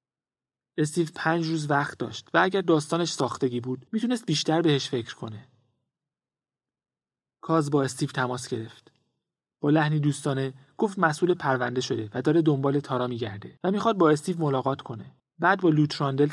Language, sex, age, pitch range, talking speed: Persian, male, 30-49, 130-160 Hz, 150 wpm